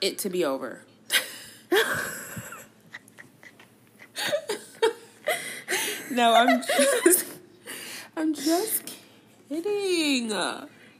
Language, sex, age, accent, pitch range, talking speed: English, female, 20-39, American, 175-280 Hz, 55 wpm